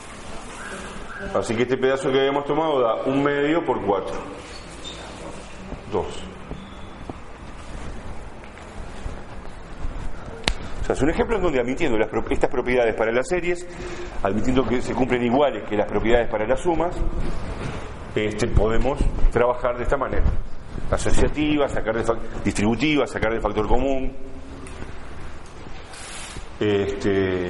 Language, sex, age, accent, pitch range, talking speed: Spanish, male, 40-59, Argentinian, 100-130 Hz, 120 wpm